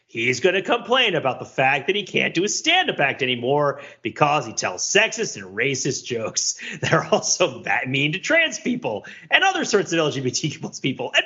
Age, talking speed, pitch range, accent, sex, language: 30-49, 195 wpm, 135-190 Hz, American, male, English